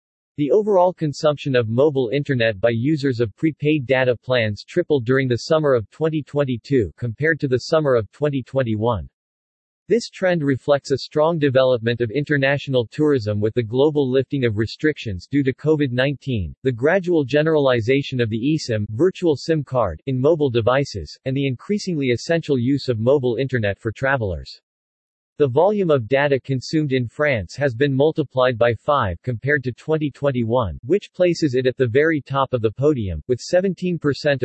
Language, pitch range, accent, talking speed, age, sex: English, 120-150 Hz, American, 160 wpm, 40-59, male